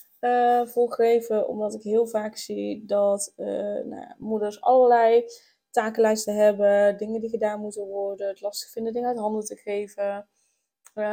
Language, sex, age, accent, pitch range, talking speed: Dutch, female, 20-39, Dutch, 205-245 Hz, 155 wpm